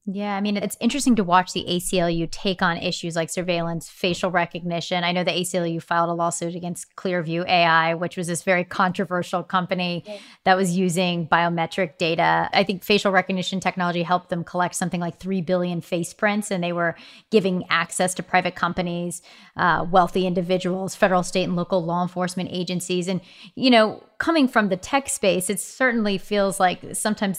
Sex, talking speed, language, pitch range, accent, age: female, 180 wpm, English, 175-200 Hz, American, 30-49